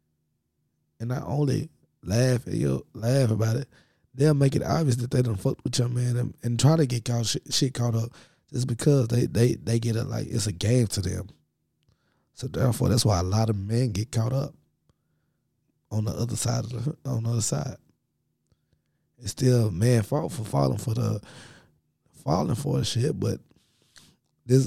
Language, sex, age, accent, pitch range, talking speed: English, male, 20-39, American, 110-135 Hz, 185 wpm